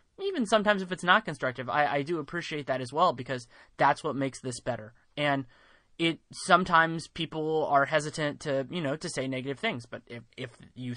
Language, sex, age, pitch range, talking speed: English, male, 20-39, 130-155 Hz, 195 wpm